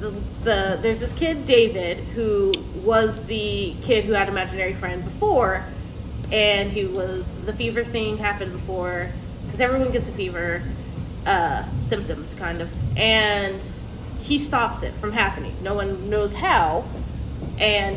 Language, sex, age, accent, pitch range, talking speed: English, female, 20-39, American, 210-285 Hz, 145 wpm